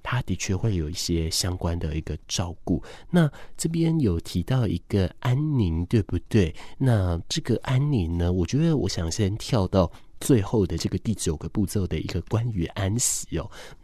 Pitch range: 85-115 Hz